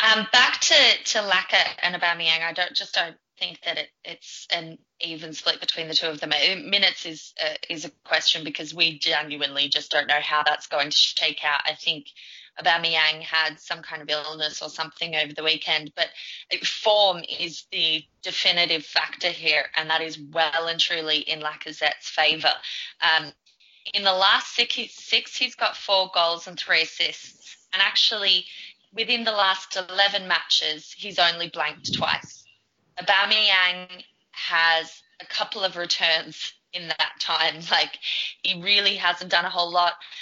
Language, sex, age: English, female, 20-39